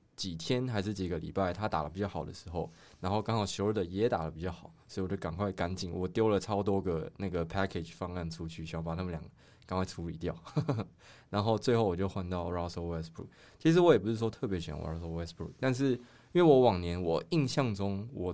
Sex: male